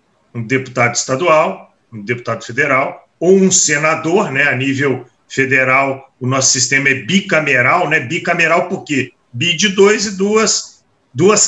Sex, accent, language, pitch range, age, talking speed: male, Brazilian, Portuguese, 135-180 Hz, 40-59, 140 wpm